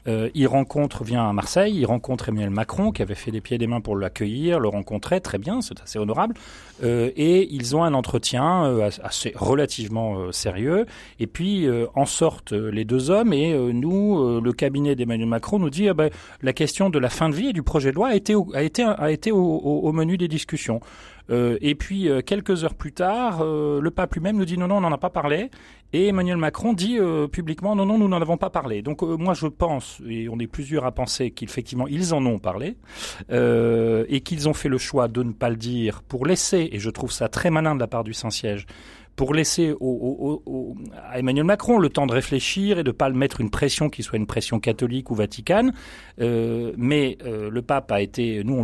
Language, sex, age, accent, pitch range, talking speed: French, male, 40-59, French, 115-165 Hz, 245 wpm